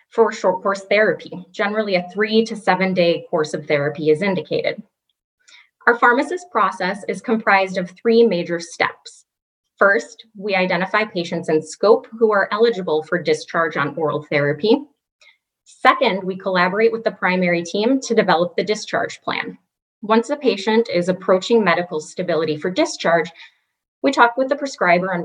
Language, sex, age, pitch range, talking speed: English, female, 20-39, 170-230 Hz, 155 wpm